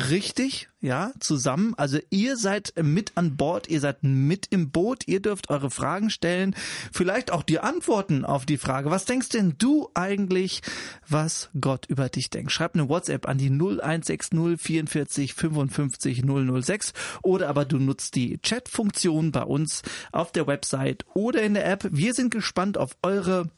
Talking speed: 160 wpm